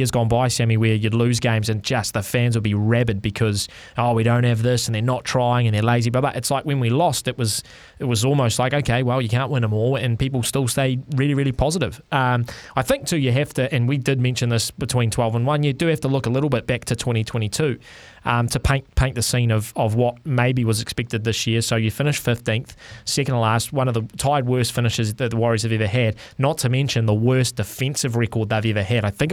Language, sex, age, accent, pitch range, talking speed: English, male, 20-39, Australian, 115-135 Hz, 255 wpm